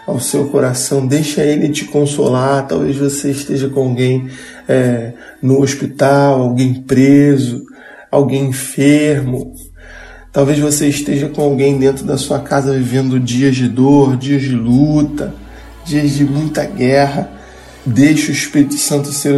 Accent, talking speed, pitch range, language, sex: Brazilian, 135 wpm, 130-155 Hz, Portuguese, male